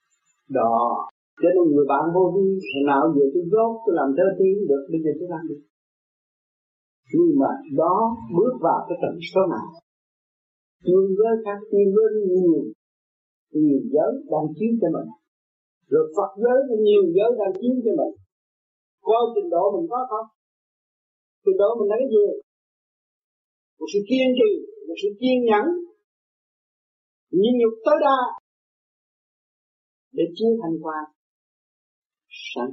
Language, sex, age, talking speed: Vietnamese, male, 50-69, 145 wpm